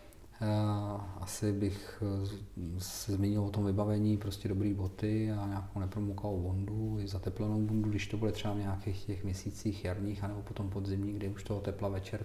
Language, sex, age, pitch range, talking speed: Czech, male, 40-59, 95-110 Hz, 165 wpm